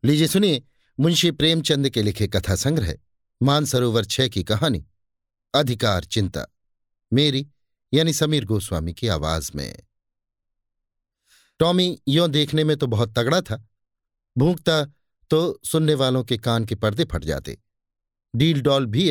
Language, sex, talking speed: Hindi, male, 130 wpm